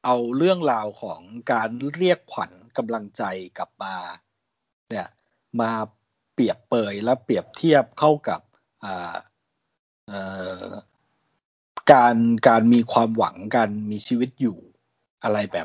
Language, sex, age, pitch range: Thai, male, 60-79, 110-160 Hz